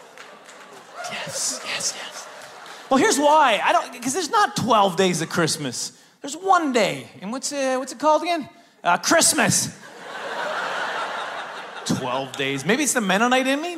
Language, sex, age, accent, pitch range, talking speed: English, male, 30-49, American, 145-205 Hz, 145 wpm